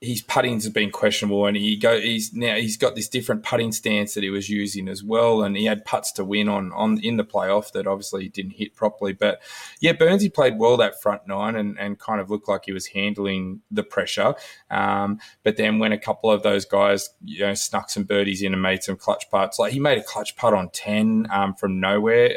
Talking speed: 240 wpm